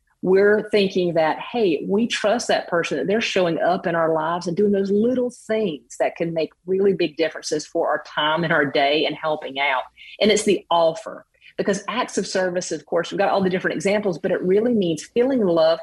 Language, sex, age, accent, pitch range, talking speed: English, female, 40-59, American, 160-210 Hz, 215 wpm